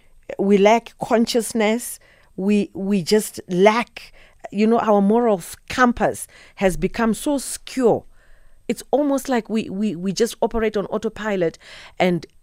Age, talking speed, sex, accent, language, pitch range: 40-59, 130 wpm, female, South African, English, 165-210 Hz